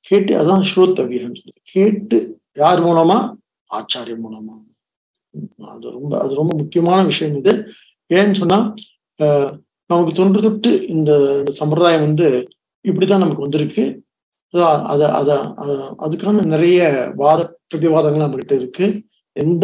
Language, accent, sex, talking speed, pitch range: English, Indian, male, 90 wpm, 150-195 Hz